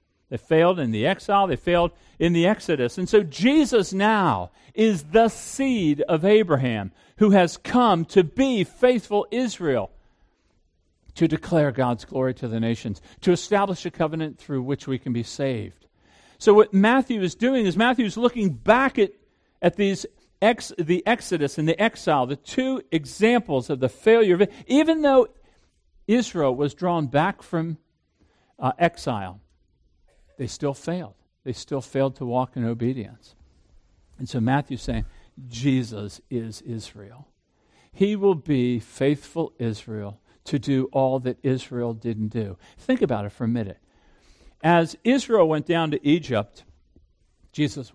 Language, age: English, 50-69